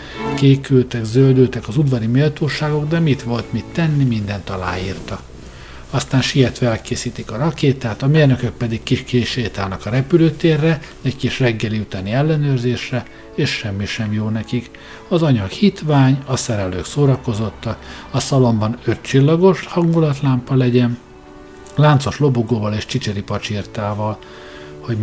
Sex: male